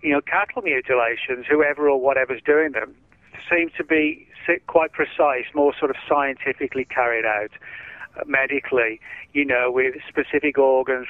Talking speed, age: 140 wpm, 40-59